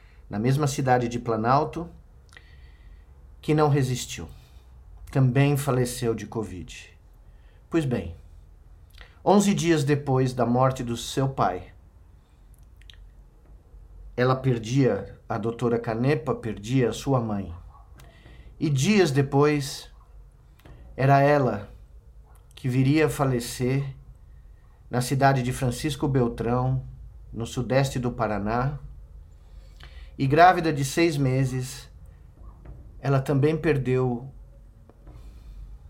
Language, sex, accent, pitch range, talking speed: Portuguese, male, Brazilian, 85-135 Hz, 95 wpm